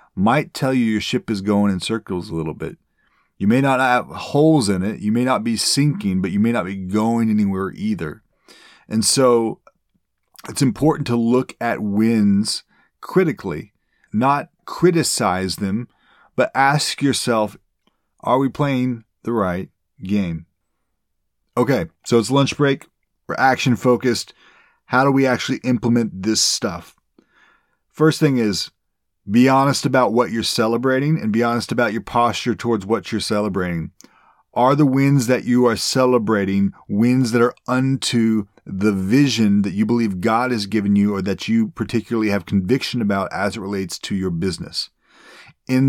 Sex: male